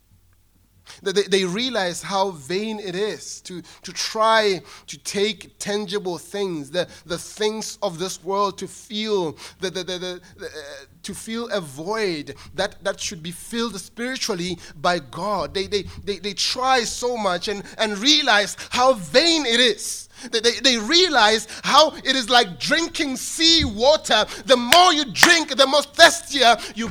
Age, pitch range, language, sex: 30-49, 140-235 Hz, English, male